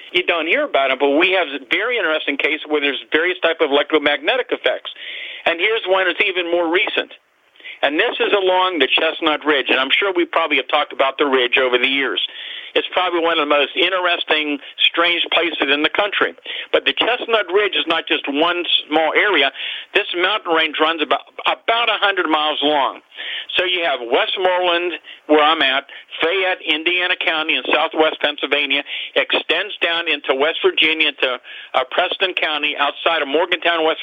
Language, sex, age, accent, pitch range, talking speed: English, male, 50-69, American, 145-185 Hz, 185 wpm